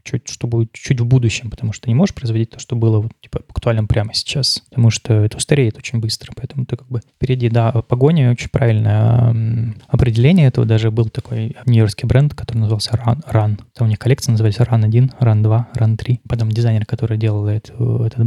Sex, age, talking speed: male, 20-39, 205 wpm